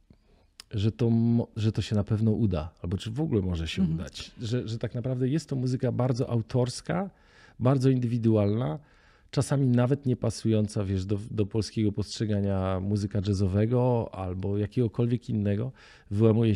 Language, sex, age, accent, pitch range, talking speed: Polish, male, 40-59, native, 105-125 Hz, 140 wpm